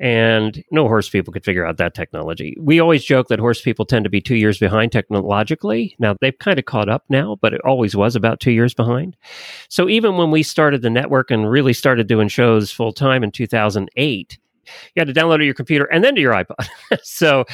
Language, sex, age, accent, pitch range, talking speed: English, male, 40-59, American, 105-145 Hz, 225 wpm